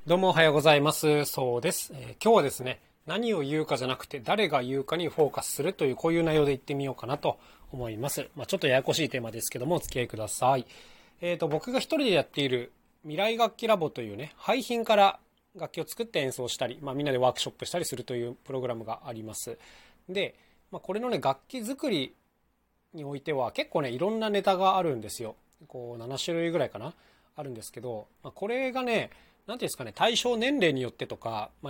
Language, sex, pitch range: Japanese, male, 130-190 Hz